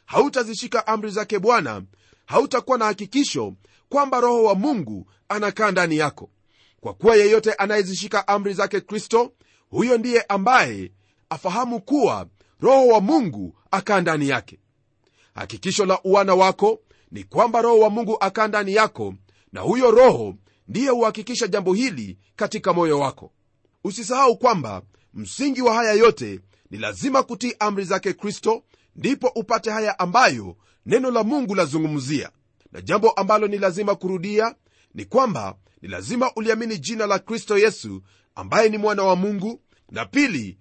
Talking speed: 140 wpm